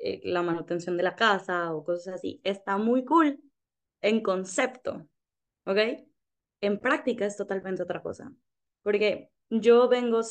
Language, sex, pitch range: Spanish, female, 185-235 Hz